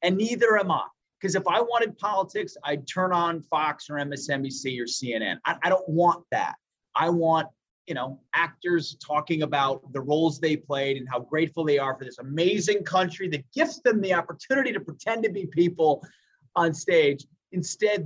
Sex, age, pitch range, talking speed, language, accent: male, 30-49, 145-180 Hz, 185 wpm, English, American